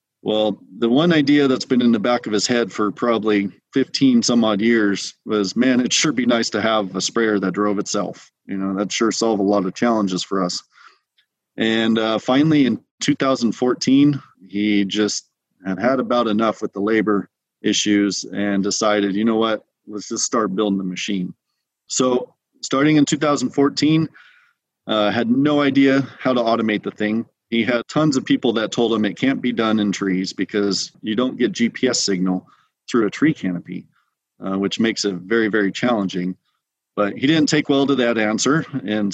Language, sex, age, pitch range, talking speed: English, male, 30-49, 105-130 Hz, 185 wpm